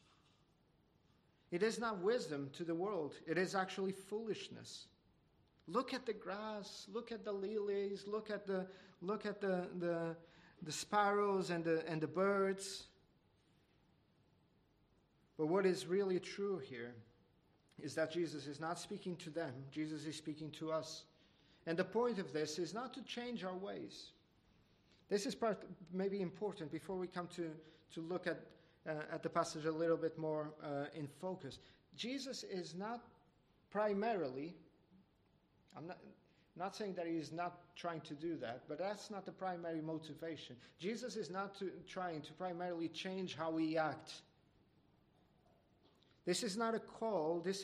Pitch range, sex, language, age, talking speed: 155-195 Hz, male, English, 40-59, 155 wpm